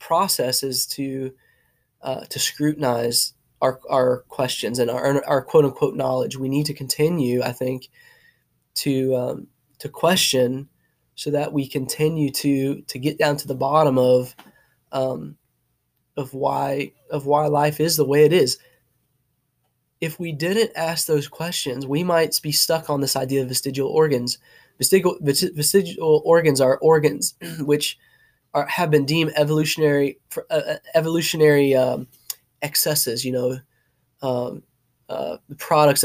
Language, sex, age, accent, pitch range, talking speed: English, male, 20-39, American, 130-155 Hz, 140 wpm